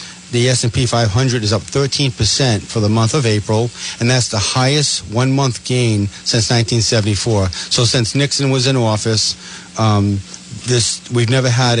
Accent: American